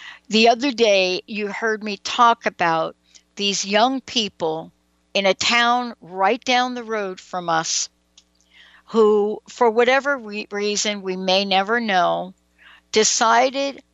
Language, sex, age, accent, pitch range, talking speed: English, female, 60-79, American, 185-235 Hz, 125 wpm